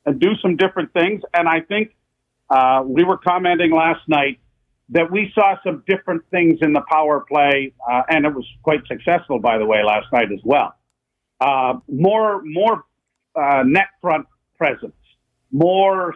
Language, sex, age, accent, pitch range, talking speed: English, male, 50-69, American, 145-185 Hz, 165 wpm